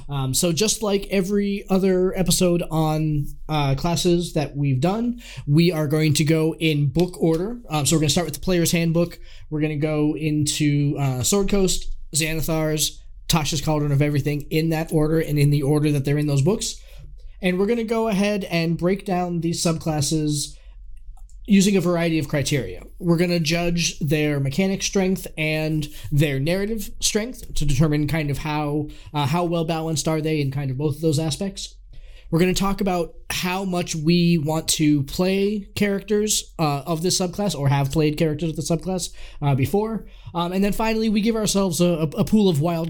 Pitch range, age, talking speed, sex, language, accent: 150-175 Hz, 20-39, 195 wpm, male, English, American